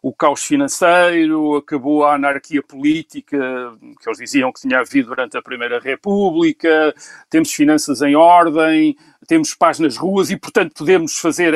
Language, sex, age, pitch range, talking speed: Portuguese, male, 50-69, 150-245 Hz, 150 wpm